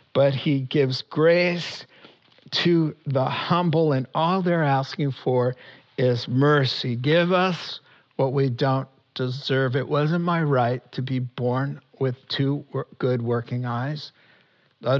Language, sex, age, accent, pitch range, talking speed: English, male, 50-69, American, 130-150 Hz, 130 wpm